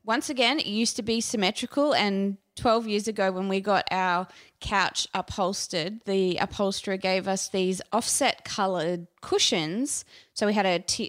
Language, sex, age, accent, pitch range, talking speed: English, female, 20-39, Australian, 175-210 Hz, 155 wpm